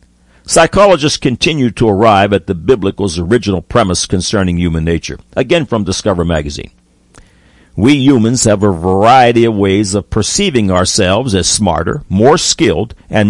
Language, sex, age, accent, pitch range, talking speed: English, male, 60-79, American, 95-125 Hz, 140 wpm